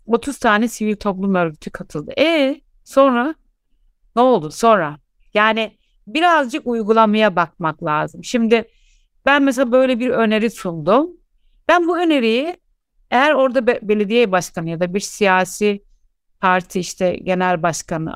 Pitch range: 190-255 Hz